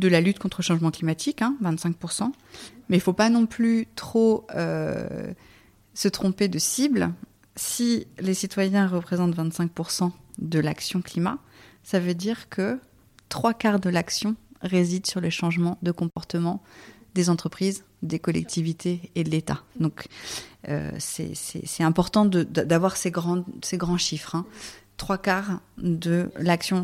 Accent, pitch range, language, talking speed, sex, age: French, 165-190 Hz, French, 155 wpm, female, 30-49